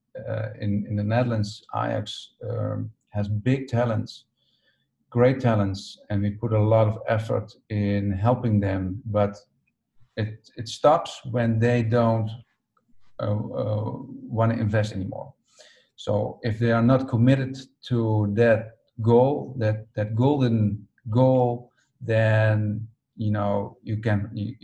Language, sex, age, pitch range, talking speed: English, male, 50-69, 105-120 Hz, 130 wpm